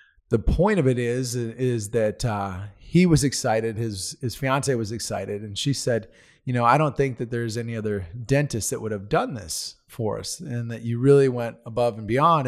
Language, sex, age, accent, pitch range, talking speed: English, male, 30-49, American, 110-130 Hz, 210 wpm